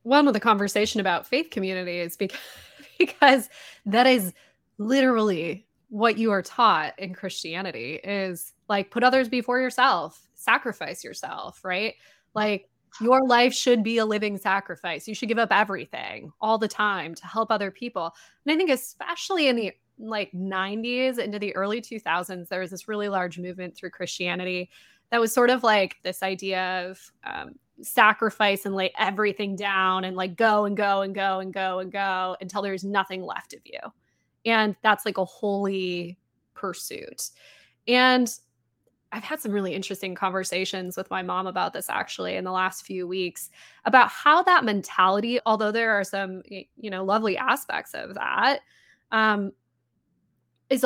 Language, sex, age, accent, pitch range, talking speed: English, female, 20-39, American, 185-230 Hz, 165 wpm